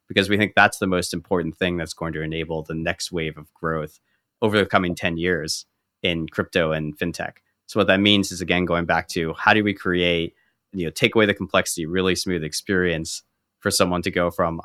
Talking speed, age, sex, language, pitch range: 215 wpm, 30-49, male, English, 80-90 Hz